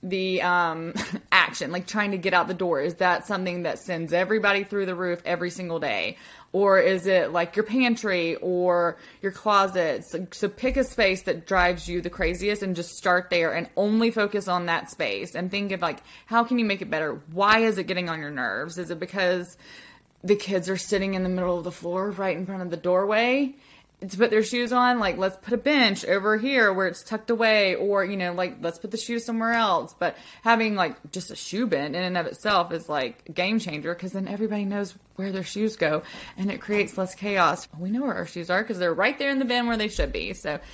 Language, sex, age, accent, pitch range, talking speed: English, female, 20-39, American, 175-215 Hz, 235 wpm